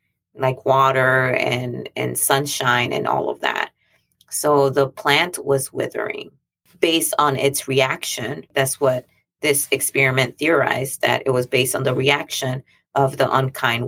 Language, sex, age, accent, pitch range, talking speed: English, female, 30-49, American, 130-165 Hz, 145 wpm